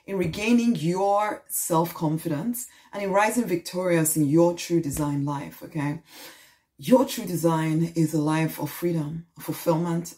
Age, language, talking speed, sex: 30-49, English, 135 wpm, female